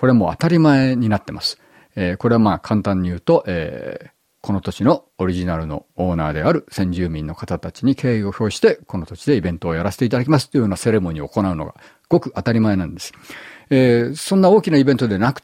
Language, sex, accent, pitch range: Japanese, male, native, 90-120 Hz